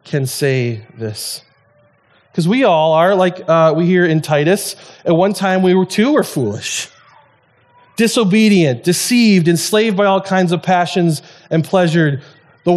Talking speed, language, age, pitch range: 150 wpm, English, 30-49, 130-170 Hz